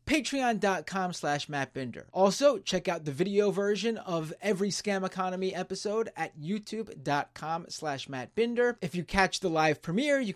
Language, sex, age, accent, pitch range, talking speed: English, male, 30-49, American, 155-220 Hz, 135 wpm